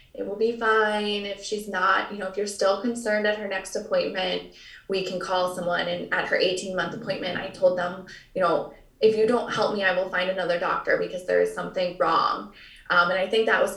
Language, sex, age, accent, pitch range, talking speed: English, female, 20-39, American, 180-225 Hz, 225 wpm